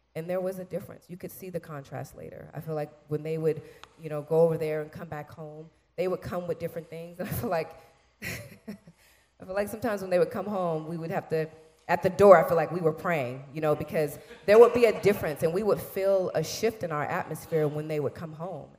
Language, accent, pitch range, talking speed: English, American, 145-175 Hz, 245 wpm